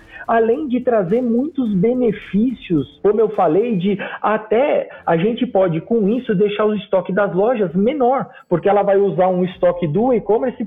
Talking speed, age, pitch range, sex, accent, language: 165 wpm, 40-59, 170-235 Hz, male, Brazilian, Portuguese